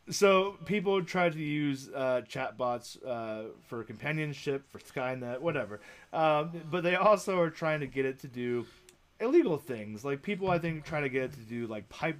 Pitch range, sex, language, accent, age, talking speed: 125-165 Hz, male, English, American, 20-39, 190 wpm